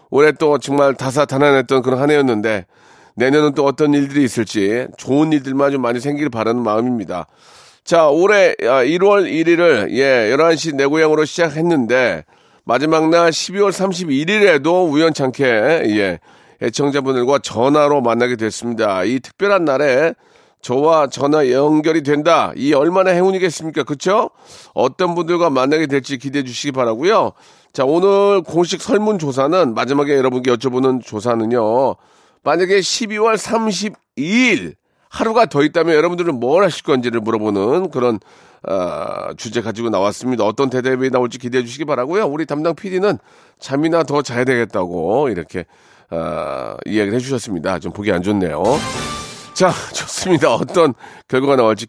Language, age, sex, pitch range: Korean, 40-59, male, 125-165 Hz